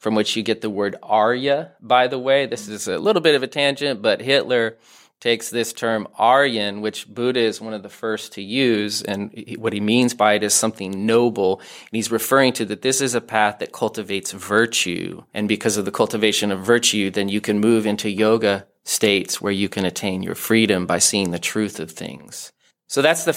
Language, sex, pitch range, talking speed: English, male, 105-120 Hz, 215 wpm